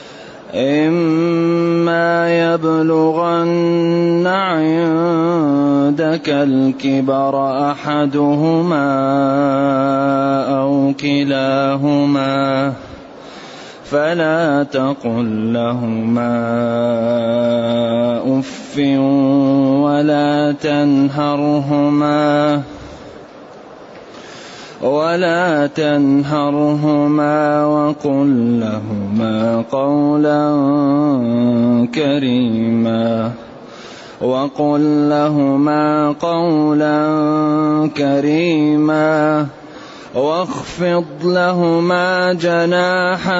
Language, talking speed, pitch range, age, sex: Arabic, 35 wpm, 135-155 Hz, 20-39, male